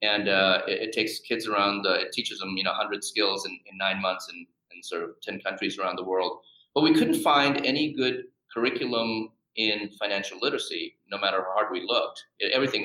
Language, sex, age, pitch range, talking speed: English, male, 30-49, 95-140 Hz, 215 wpm